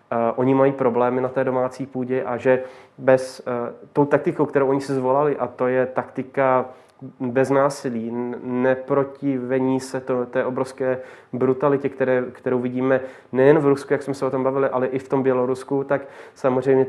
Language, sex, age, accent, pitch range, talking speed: Czech, male, 30-49, native, 125-135 Hz, 175 wpm